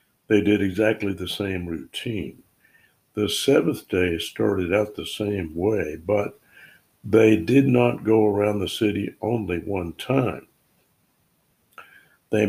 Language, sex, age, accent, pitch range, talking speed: English, male, 60-79, American, 90-110 Hz, 125 wpm